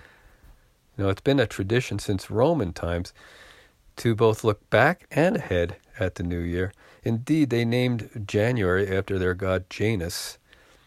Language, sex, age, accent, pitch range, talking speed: English, male, 40-59, American, 95-125 Hz, 145 wpm